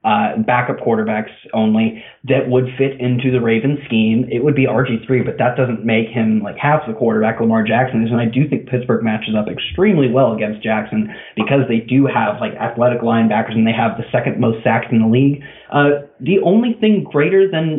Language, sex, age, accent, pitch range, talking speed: English, male, 20-39, American, 110-140 Hz, 205 wpm